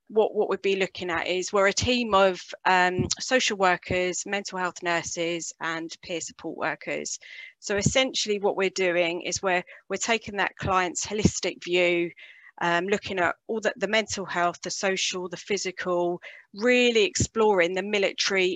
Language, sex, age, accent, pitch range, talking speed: English, female, 30-49, British, 180-205 Hz, 160 wpm